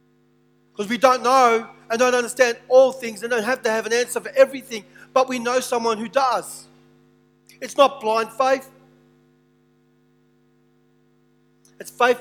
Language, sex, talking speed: English, male, 145 wpm